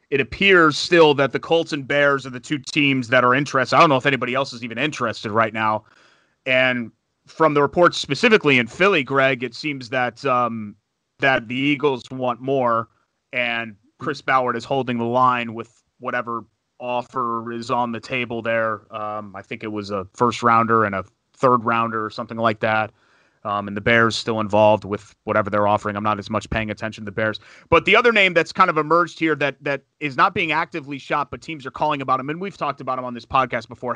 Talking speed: 220 wpm